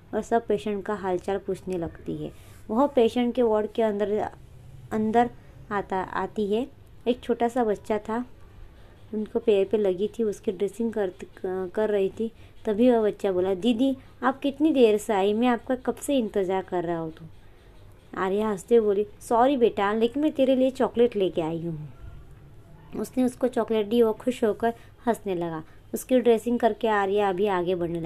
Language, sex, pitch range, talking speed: Hindi, male, 185-230 Hz, 175 wpm